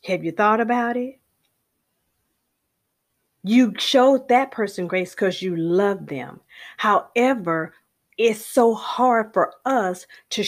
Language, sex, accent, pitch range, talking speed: English, female, American, 180-235 Hz, 120 wpm